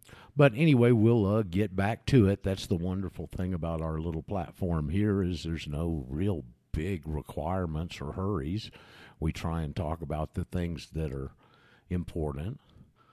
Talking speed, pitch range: 160 wpm, 80-100 Hz